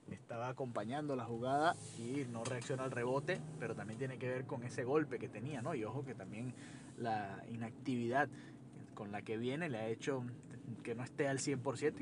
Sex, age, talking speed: male, 30-49, 190 wpm